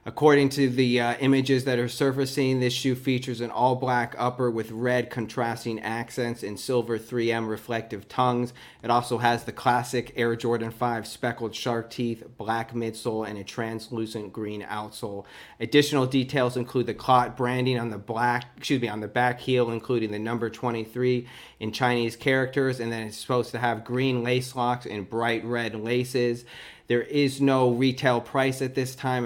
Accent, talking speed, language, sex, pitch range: American, 170 wpm, English, male, 115-125 Hz